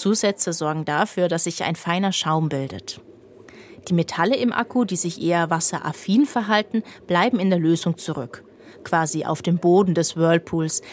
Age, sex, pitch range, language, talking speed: 30-49, female, 155-185 Hz, German, 160 wpm